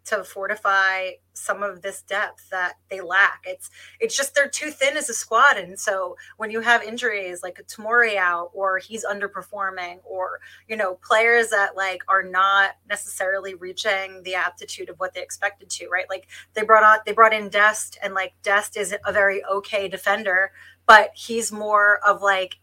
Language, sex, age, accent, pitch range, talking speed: Italian, female, 30-49, American, 195-225 Hz, 185 wpm